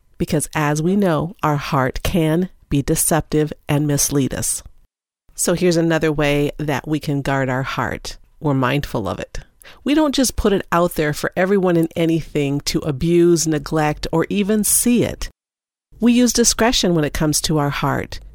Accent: American